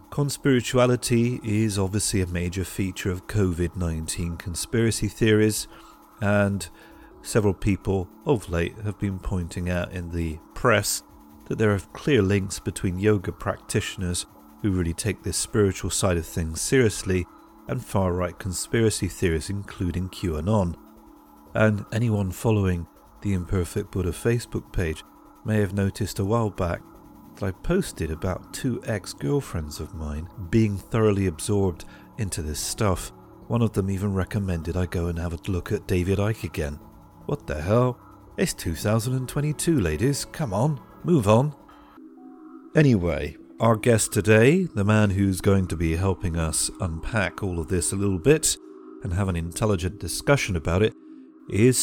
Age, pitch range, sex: 40-59, 90-115 Hz, male